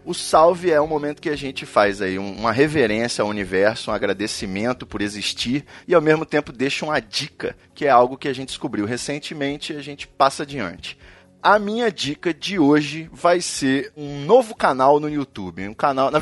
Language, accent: Portuguese, Brazilian